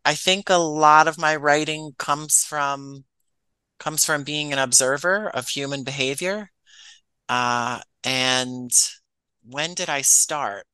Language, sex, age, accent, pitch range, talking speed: English, male, 30-49, American, 125-150 Hz, 130 wpm